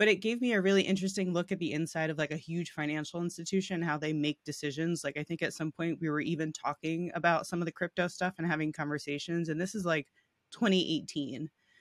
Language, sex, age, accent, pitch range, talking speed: English, female, 20-39, American, 150-180 Hz, 230 wpm